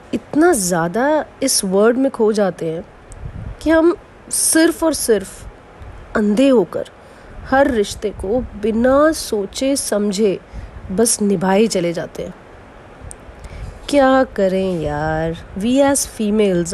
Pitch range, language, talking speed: 180-265 Hz, Hindi, 115 wpm